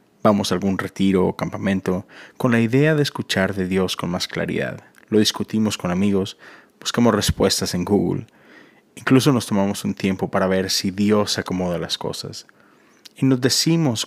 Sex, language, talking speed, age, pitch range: male, Spanish, 170 wpm, 30-49, 95-115 Hz